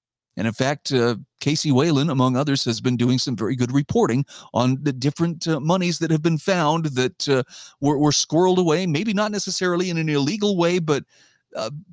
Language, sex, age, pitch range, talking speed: English, male, 40-59, 130-180 Hz, 195 wpm